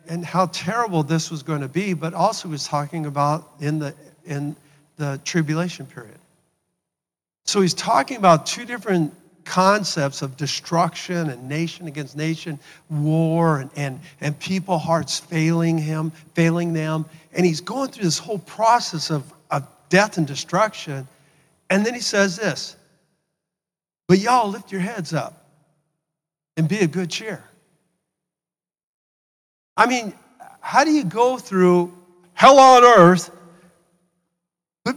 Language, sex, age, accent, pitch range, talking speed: English, male, 50-69, American, 155-205 Hz, 140 wpm